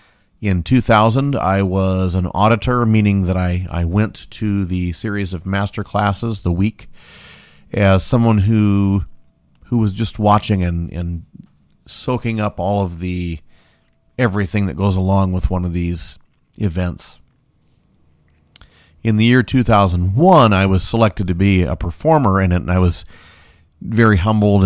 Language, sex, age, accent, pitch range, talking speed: English, male, 40-59, American, 90-105 Hz, 145 wpm